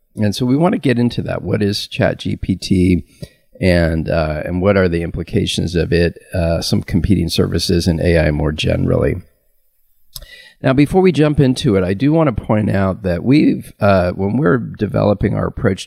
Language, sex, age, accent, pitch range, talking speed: English, male, 40-59, American, 90-110 Hz, 180 wpm